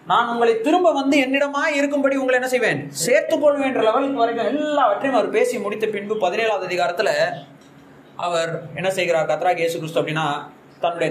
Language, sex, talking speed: Tamil, male, 145 wpm